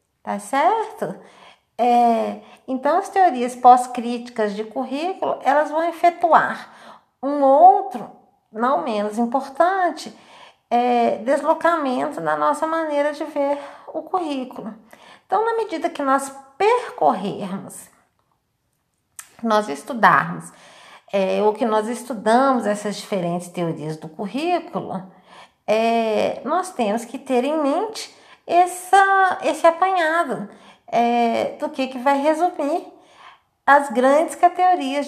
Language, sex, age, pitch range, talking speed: Portuguese, female, 50-69, 240-350 Hz, 105 wpm